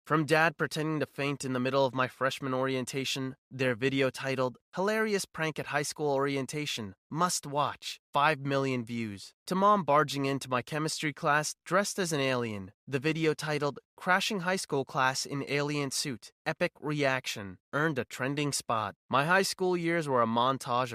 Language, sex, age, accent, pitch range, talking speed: English, male, 20-39, American, 115-150 Hz, 170 wpm